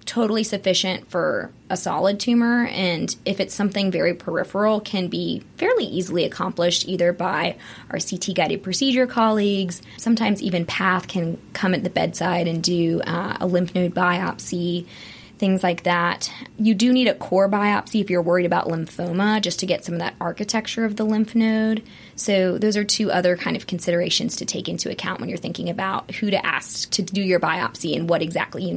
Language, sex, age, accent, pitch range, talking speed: English, female, 20-39, American, 180-215 Hz, 190 wpm